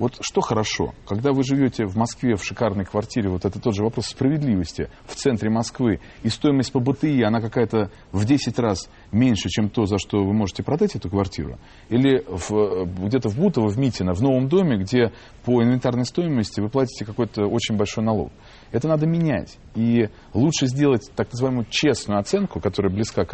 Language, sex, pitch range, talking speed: Russian, male, 100-130 Hz, 185 wpm